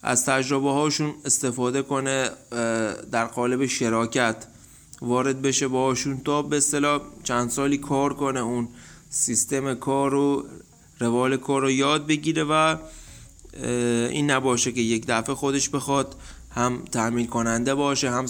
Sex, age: male, 20-39